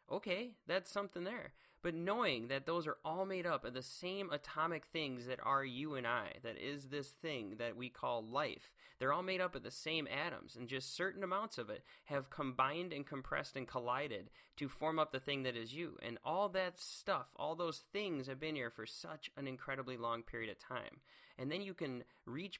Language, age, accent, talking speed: English, 20-39, American, 215 wpm